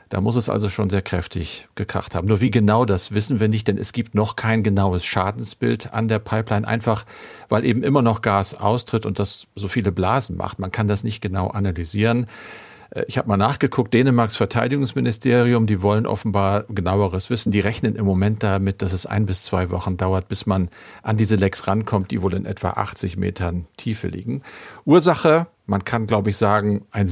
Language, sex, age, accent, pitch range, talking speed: German, male, 50-69, German, 100-115 Hz, 195 wpm